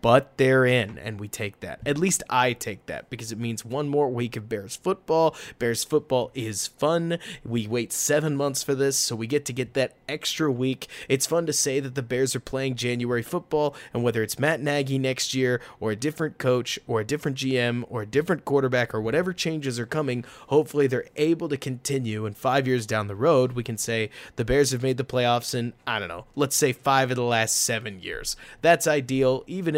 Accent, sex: American, male